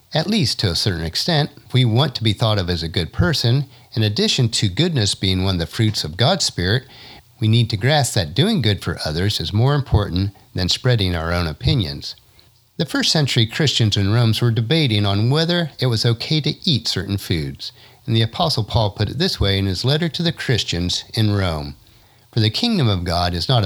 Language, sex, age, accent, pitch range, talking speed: English, male, 50-69, American, 95-130 Hz, 215 wpm